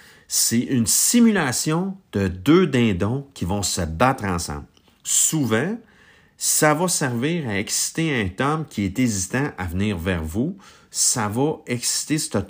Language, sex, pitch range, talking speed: French, male, 90-120 Hz, 145 wpm